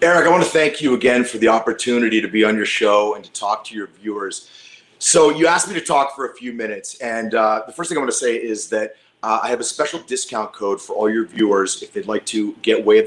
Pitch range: 110-155 Hz